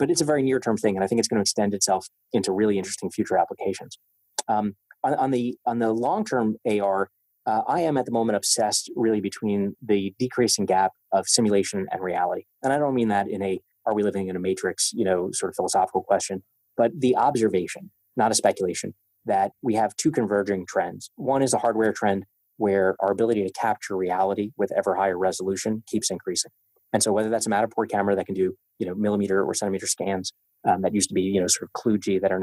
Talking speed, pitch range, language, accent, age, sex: 220 wpm, 95-115 Hz, English, American, 20-39, male